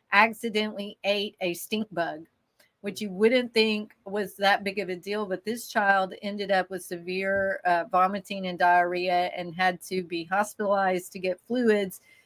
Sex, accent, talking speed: female, American, 165 wpm